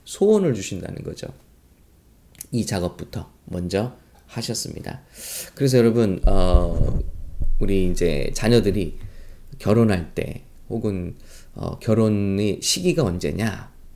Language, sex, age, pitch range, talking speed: English, male, 20-39, 90-125 Hz, 85 wpm